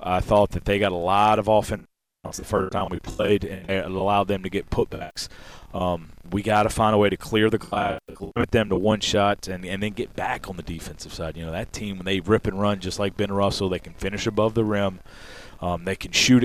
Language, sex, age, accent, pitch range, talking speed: English, male, 30-49, American, 90-105 Hz, 250 wpm